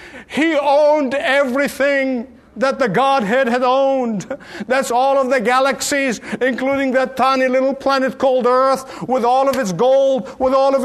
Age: 50-69